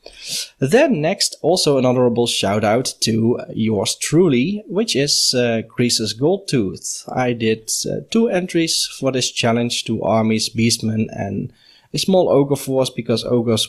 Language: English